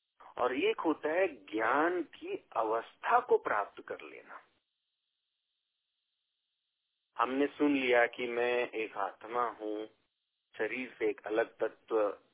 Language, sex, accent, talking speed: Hindi, male, native, 115 wpm